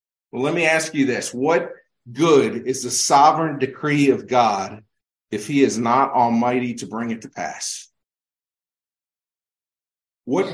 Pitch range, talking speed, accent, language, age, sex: 130-175 Hz, 140 wpm, American, English, 40-59, male